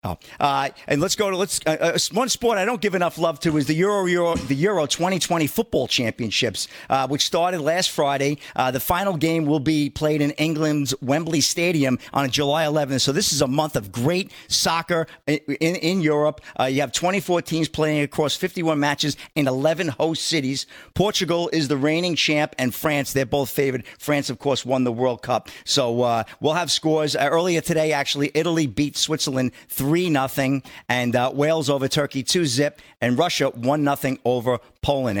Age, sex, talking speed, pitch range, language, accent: 50-69, male, 195 wpm, 135-165 Hz, English, American